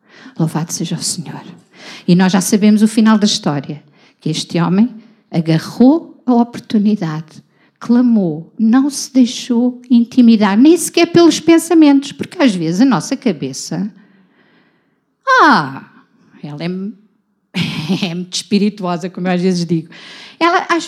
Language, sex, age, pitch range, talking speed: Portuguese, female, 50-69, 185-255 Hz, 130 wpm